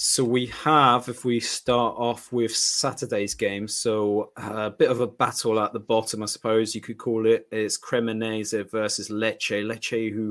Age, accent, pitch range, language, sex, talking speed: 30-49, British, 105-125 Hz, English, male, 180 wpm